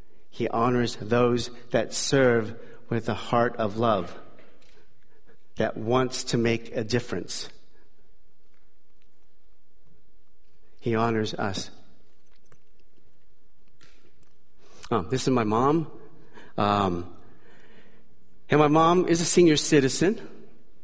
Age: 50-69